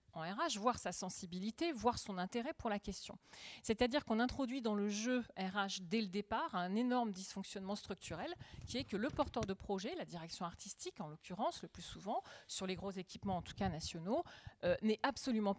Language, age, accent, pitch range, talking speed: French, 40-59, French, 195-245 Hz, 205 wpm